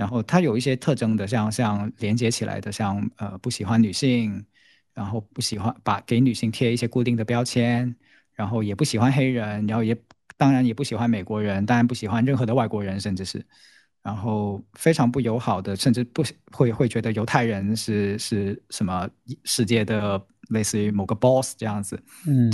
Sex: male